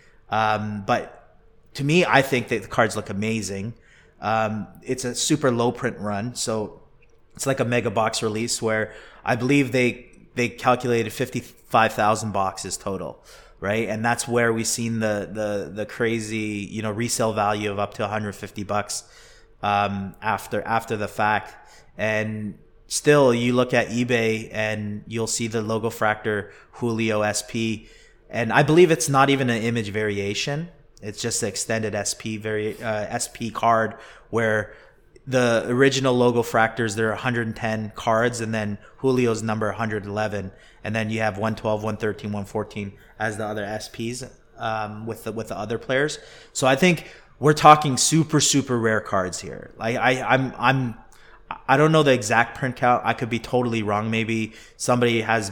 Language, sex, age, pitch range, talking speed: English, male, 30-49, 110-120 Hz, 165 wpm